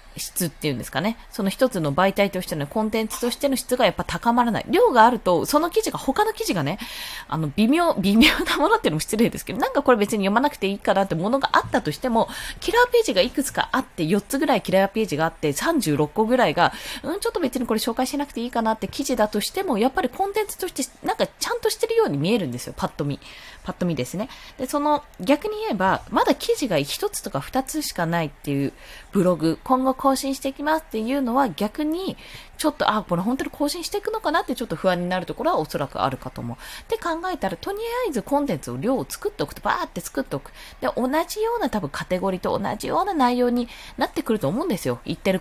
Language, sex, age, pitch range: Japanese, female, 20-39, 185-295 Hz